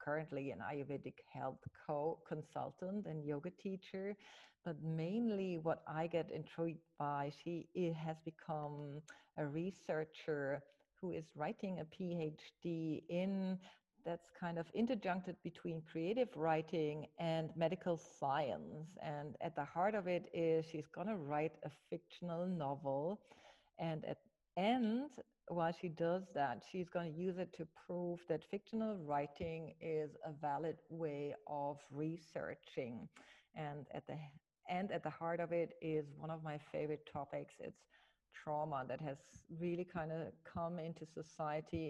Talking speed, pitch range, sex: 140 wpm, 155-180 Hz, female